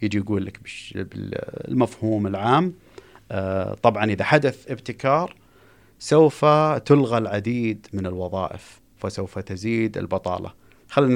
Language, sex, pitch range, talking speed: Arabic, male, 95-130 Hz, 95 wpm